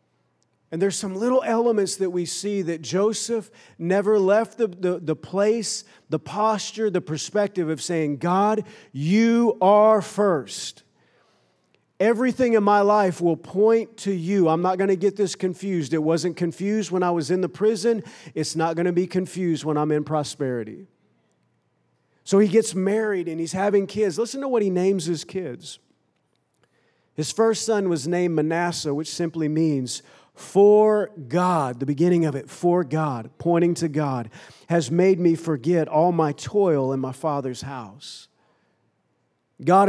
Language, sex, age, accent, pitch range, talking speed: English, male, 40-59, American, 155-200 Hz, 160 wpm